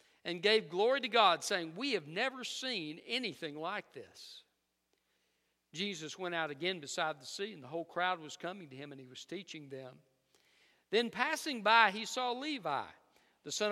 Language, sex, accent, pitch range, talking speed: English, male, American, 165-225 Hz, 180 wpm